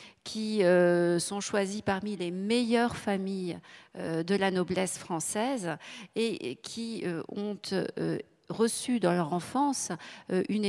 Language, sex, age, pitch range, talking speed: French, female, 40-59, 170-205 Hz, 105 wpm